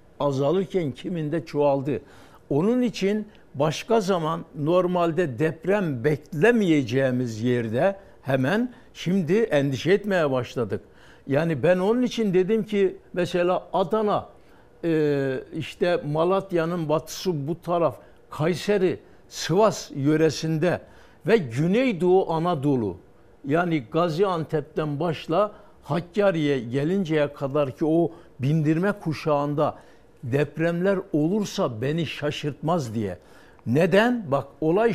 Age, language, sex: 60-79, Turkish, male